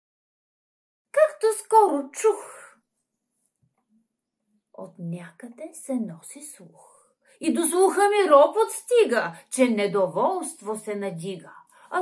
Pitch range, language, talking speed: 225-330 Hz, Bulgarian, 95 wpm